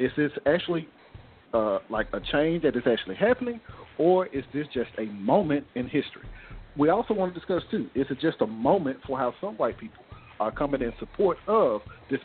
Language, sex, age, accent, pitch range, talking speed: English, male, 50-69, American, 120-165 Hz, 200 wpm